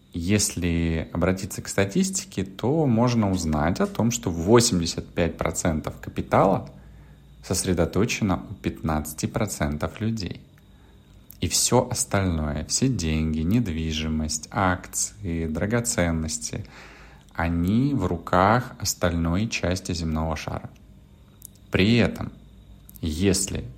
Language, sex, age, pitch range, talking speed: Russian, male, 30-49, 80-100 Hz, 85 wpm